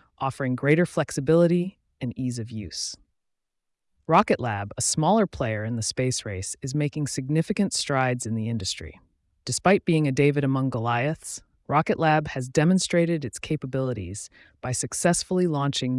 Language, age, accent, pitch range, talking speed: English, 30-49, American, 120-160 Hz, 145 wpm